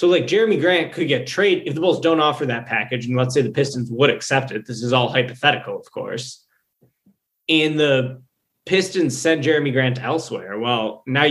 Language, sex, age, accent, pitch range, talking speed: English, male, 20-39, American, 120-150 Hz, 195 wpm